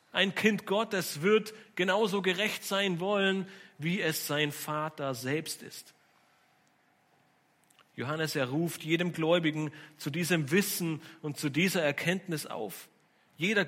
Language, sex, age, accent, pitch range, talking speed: German, male, 40-59, German, 150-200 Hz, 125 wpm